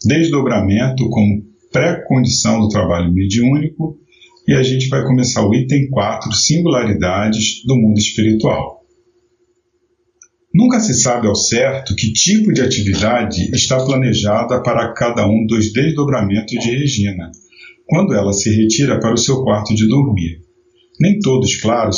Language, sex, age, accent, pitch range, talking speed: Portuguese, male, 40-59, Brazilian, 105-145 Hz, 135 wpm